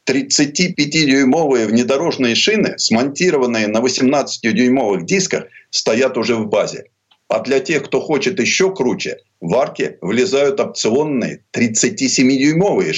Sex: male